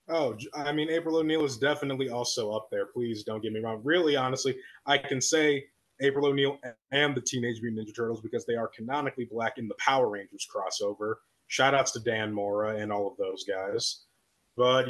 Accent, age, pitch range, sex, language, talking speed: American, 20-39, 120-150 Hz, male, English, 195 wpm